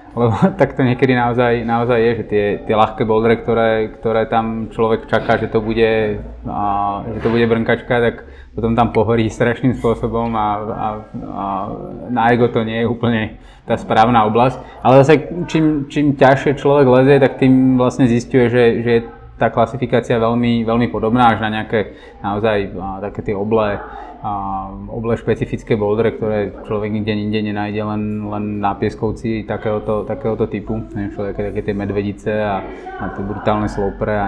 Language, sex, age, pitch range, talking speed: Czech, male, 20-39, 105-120 Hz, 160 wpm